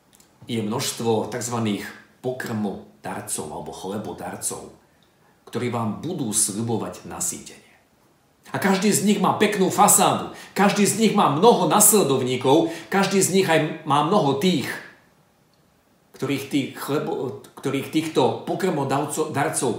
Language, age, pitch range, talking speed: Slovak, 50-69, 115-170 Hz, 110 wpm